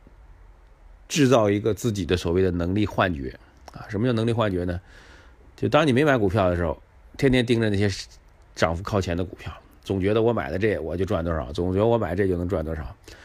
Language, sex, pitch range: Chinese, male, 85-105 Hz